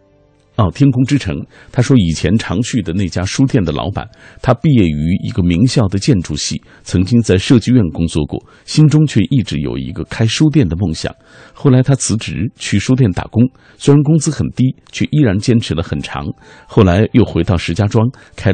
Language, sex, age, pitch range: Chinese, male, 50-69, 85-120 Hz